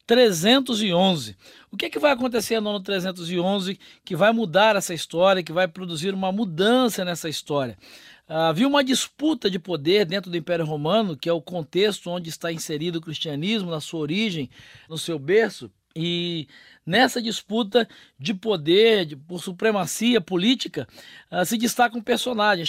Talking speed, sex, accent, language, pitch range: 155 wpm, male, Brazilian, Portuguese, 175-230 Hz